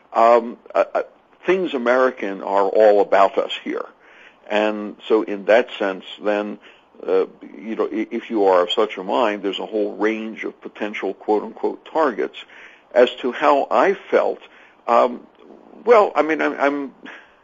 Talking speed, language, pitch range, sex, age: 150 wpm, English, 105-140 Hz, male, 60-79